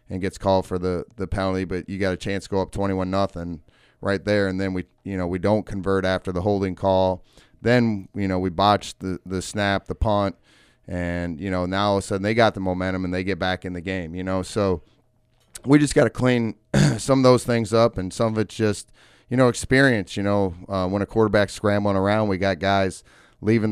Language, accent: English, American